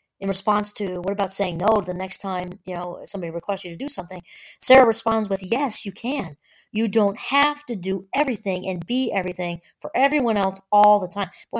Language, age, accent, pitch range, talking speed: English, 40-59, American, 185-235 Hz, 210 wpm